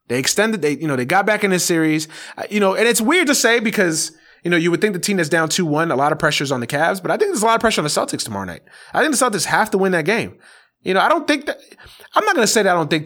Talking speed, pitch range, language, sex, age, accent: 350 wpm, 145-215 Hz, English, male, 30-49, American